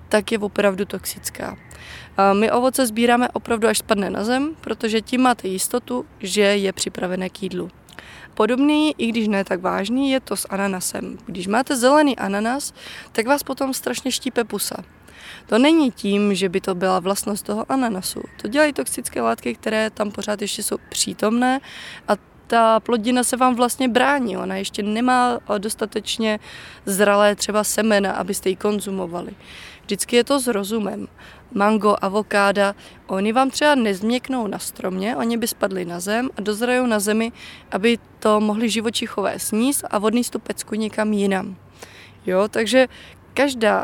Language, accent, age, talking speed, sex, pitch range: Czech, native, 20-39, 155 wpm, female, 200-245 Hz